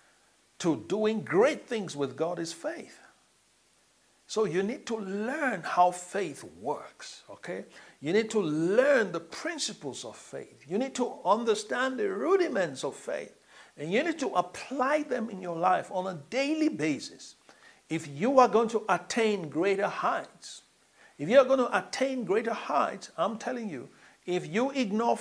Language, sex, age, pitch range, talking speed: English, male, 60-79, 180-250 Hz, 160 wpm